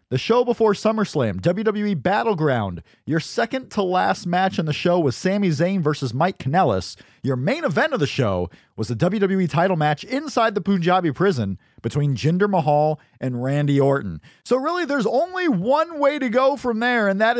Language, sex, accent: English, male, American